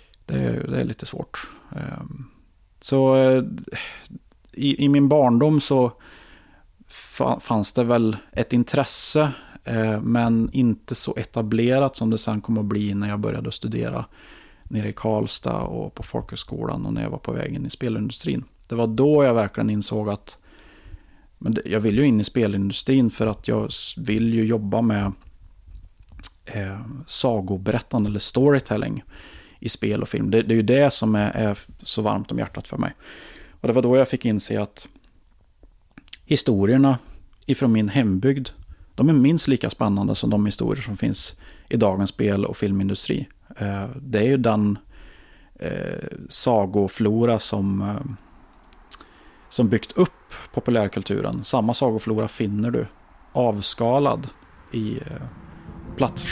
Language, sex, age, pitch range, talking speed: Swedish, male, 30-49, 100-130 Hz, 140 wpm